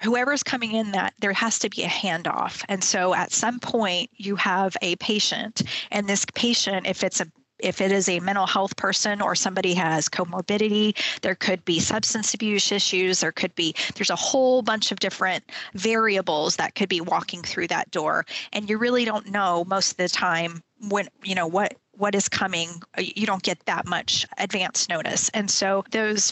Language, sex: English, female